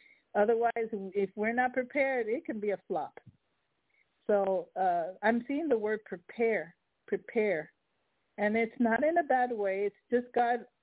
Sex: female